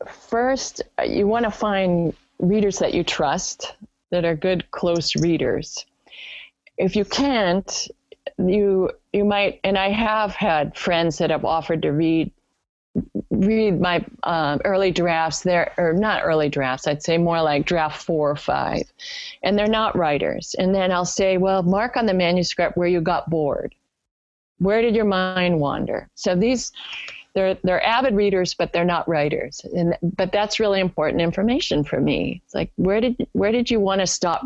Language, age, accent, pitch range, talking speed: English, 30-49, American, 170-225 Hz, 170 wpm